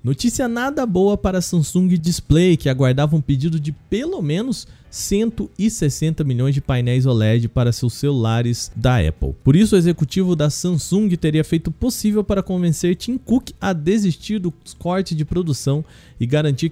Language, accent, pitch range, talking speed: Portuguese, Brazilian, 140-190 Hz, 165 wpm